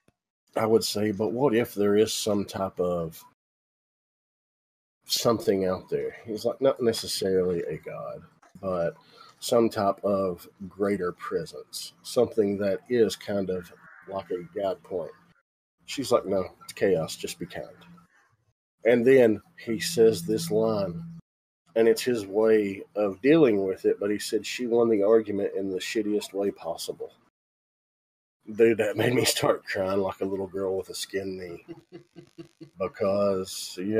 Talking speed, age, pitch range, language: 150 wpm, 40-59, 95-115 Hz, English